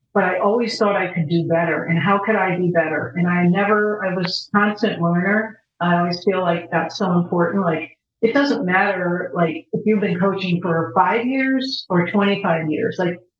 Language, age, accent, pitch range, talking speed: English, 50-69, American, 170-210 Hz, 195 wpm